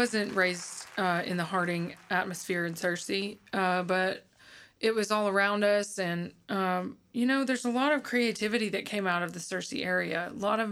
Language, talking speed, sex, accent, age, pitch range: English, 195 wpm, female, American, 20-39, 190-220 Hz